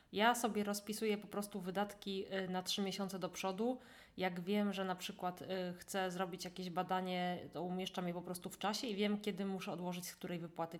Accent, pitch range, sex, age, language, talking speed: native, 170-205 Hz, female, 20-39, Polish, 195 wpm